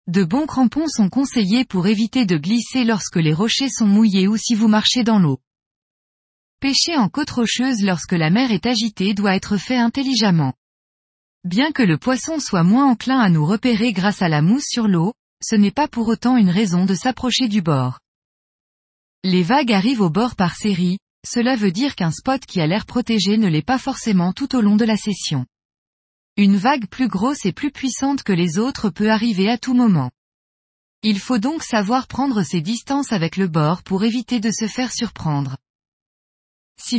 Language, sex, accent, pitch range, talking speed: French, female, French, 185-245 Hz, 190 wpm